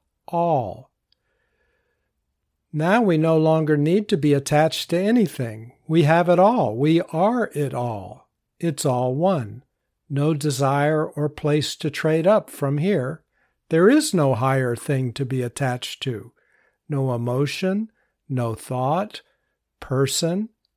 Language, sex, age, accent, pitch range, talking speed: English, male, 60-79, American, 130-175 Hz, 130 wpm